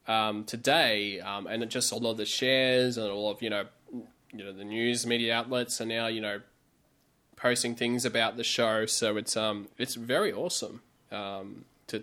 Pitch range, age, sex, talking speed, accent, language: 115-130 Hz, 20-39, male, 185 wpm, Australian, English